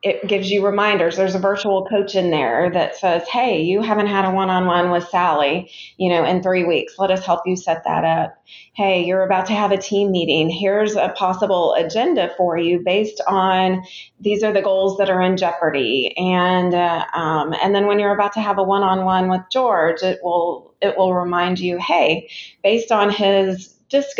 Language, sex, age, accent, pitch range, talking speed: English, female, 30-49, American, 175-205 Hz, 200 wpm